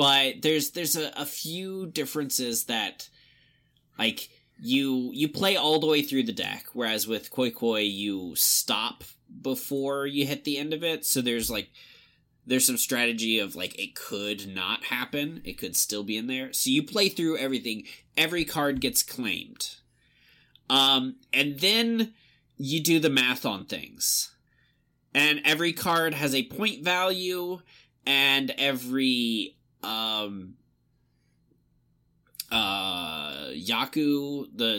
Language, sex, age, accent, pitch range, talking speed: English, male, 20-39, American, 125-155 Hz, 140 wpm